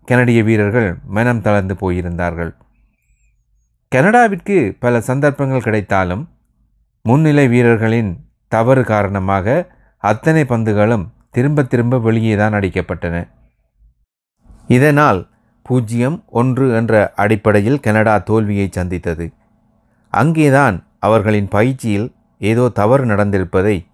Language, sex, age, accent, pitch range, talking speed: Tamil, male, 30-49, native, 100-125 Hz, 85 wpm